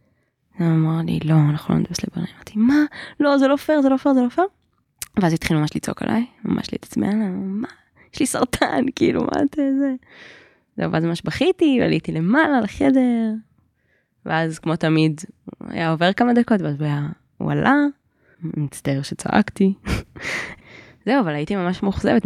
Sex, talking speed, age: female, 160 wpm, 20-39